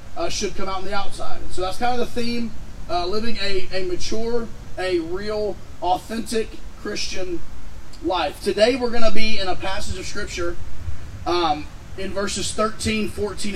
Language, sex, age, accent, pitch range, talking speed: English, male, 30-49, American, 170-220 Hz, 170 wpm